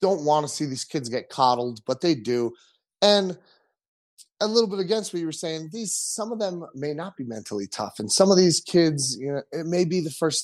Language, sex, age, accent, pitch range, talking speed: English, male, 30-49, American, 125-170 Hz, 235 wpm